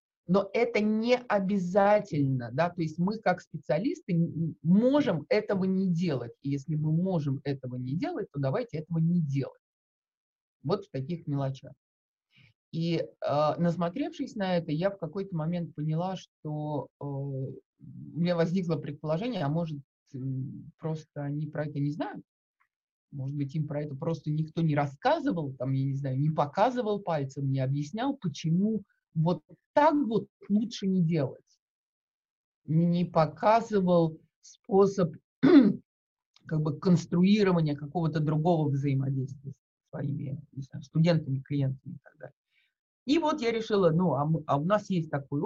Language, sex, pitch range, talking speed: Russian, male, 145-190 Hz, 145 wpm